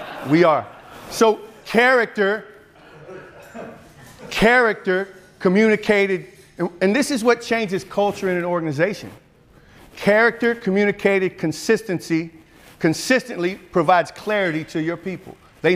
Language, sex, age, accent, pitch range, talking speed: English, male, 50-69, American, 140-200 Hz, 100 wpm